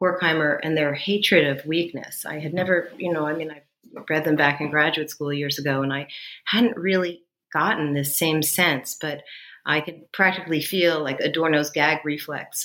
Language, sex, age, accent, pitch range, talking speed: English, female, 40-59, American, 150-180 Hz, 185 wpm